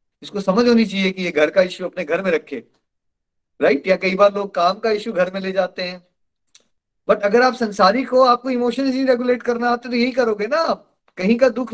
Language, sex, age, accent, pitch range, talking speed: Hindi, male, 30-49, native, 155-215 Hz, 215 wpm